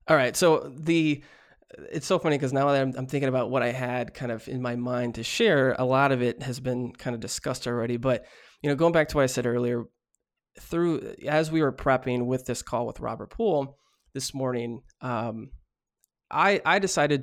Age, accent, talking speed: 20-39, American, 215 wpm